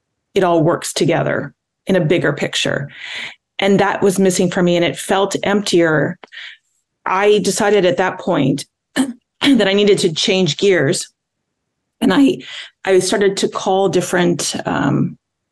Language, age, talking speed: English, 30-49, 145 wpm